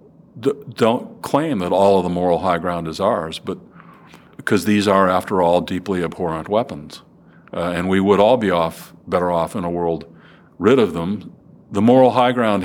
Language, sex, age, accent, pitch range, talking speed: English, male, 50-69, American, 85-100 Hz, 185 wpm